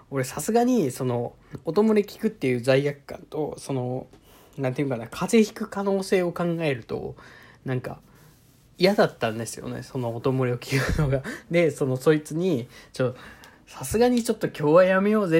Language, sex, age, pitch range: Japanese, male, 20-39, 130-165 Hz